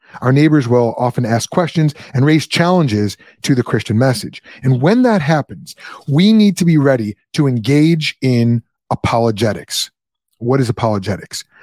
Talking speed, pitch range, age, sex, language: 150 wpm, 115-150 Hz, 30-49, male, English